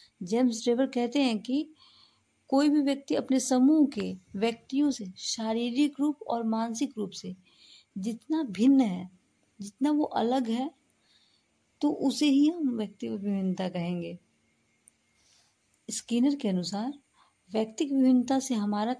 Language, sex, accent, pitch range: Hindi, female, native, 200-265 Hz